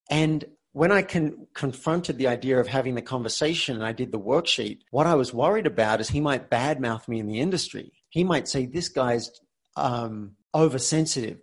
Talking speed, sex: 185 wpm, male